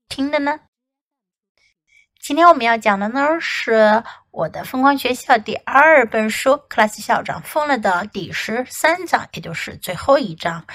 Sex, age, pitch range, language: female, 60-79, 205-280 Hz, Chinese